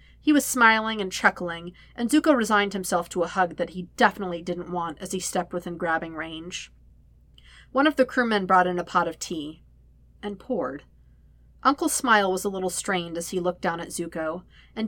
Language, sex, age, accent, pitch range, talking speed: English, female, 40-59, American, 170-235 Hz, 195 wpm